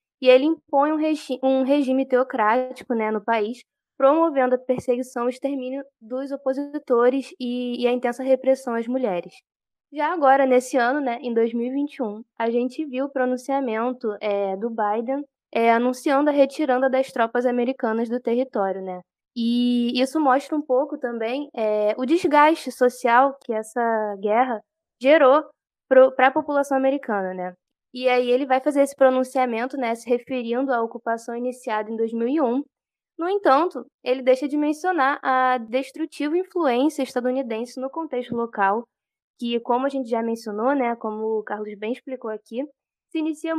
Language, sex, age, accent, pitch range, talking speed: Portuguese, female, 10-29, Brazilian, 230-270 Hz, 155 wpm